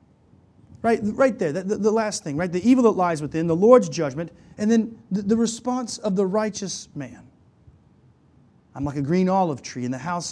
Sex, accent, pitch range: male, American, 150-215 Hz